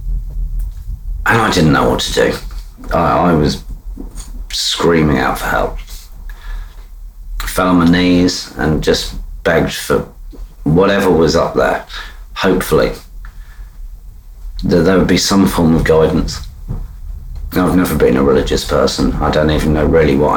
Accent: British